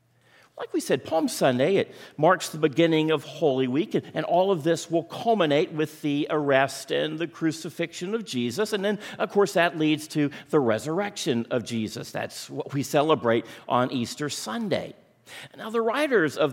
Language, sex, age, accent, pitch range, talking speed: English, male, 50-69, American, 130-175 Hz, 175 wpm